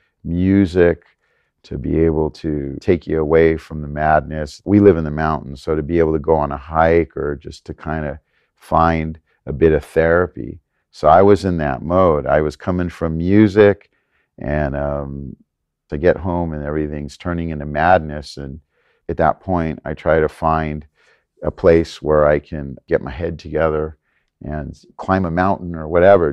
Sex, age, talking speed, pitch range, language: male, 50-69, 180 wpm, 75-85 Hz, English